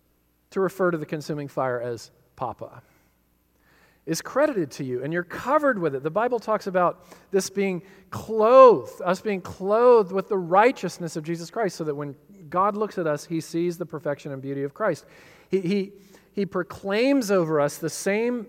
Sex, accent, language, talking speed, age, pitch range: male, American, English, 180 wpm, 40-59, 155-205 Hz